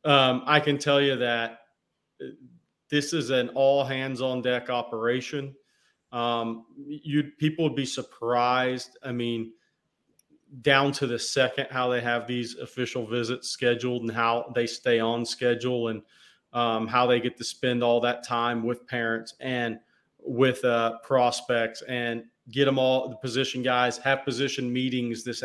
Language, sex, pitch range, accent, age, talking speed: English, male, 120-130 Hz, American, 40-59, 145 wpm